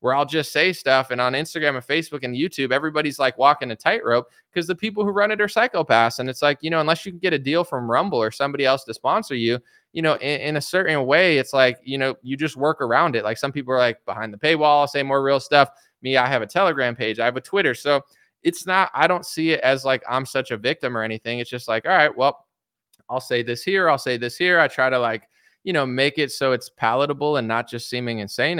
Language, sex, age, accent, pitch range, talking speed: English, male, 20-39, American, 125-170 Hz, 270 wpm